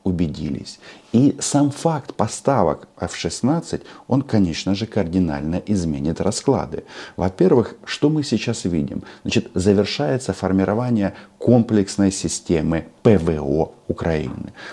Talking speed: 100 wpm